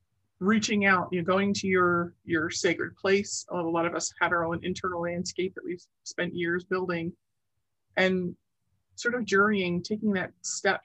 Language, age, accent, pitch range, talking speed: English, 30-49, American, 170-200 Hz, 185 wpm